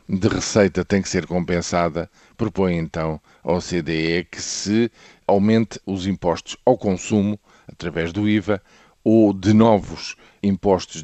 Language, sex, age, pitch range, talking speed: Portuguese, male, 50-69, 85-105 Hz, 130 wpm